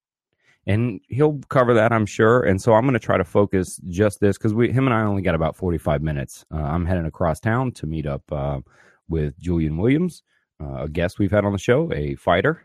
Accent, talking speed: American, 225 wpm